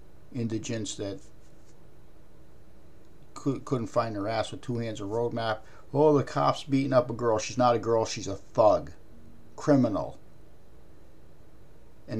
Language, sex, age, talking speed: English, male, 50-69, 140 wpm